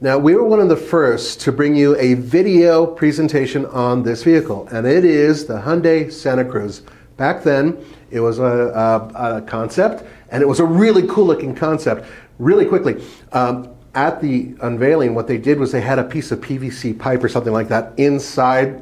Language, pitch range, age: English, 120-145 Hz, 40-59